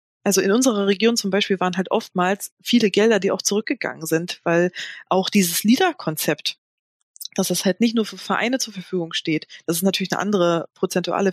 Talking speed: 185 wpm